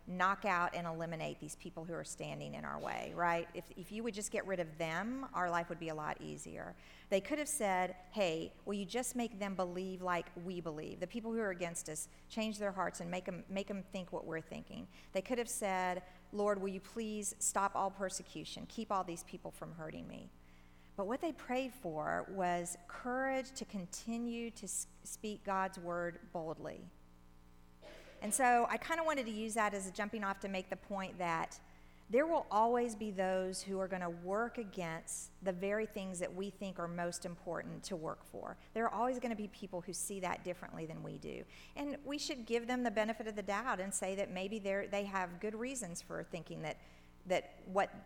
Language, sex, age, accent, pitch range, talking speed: English, female, 50-69, American, 175-220 Hz, 215 wpm